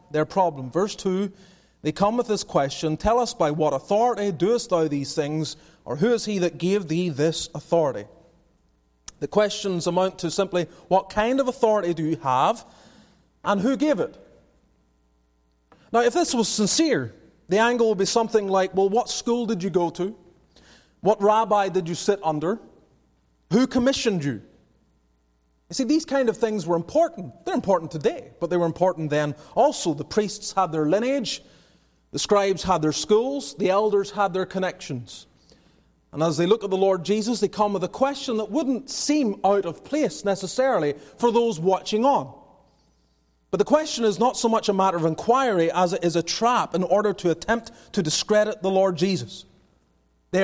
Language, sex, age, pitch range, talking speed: English, male, 30-49, 165-220 Hz, 180 wpm